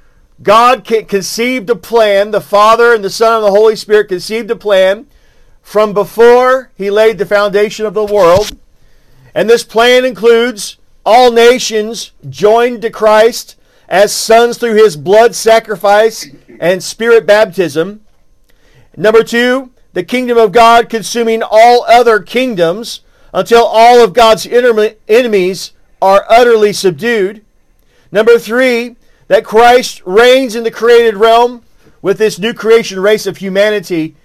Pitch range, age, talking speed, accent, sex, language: 200-235 Hz, 50-69, 135 wpm, American, male, English